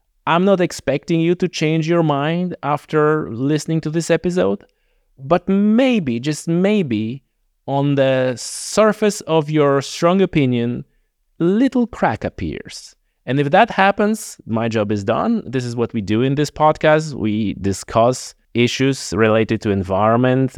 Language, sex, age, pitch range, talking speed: English, male, 30-49, 105-155 Hz, 145 wpm